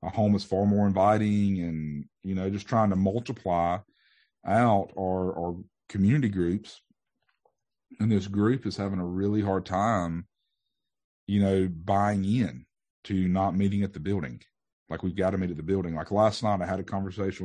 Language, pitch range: English, 90-100 Hz